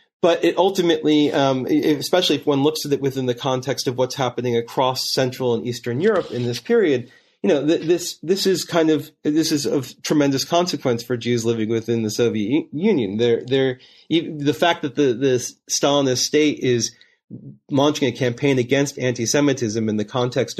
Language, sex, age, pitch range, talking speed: English, male, 30-49, 115-150 Hz, 185 wpm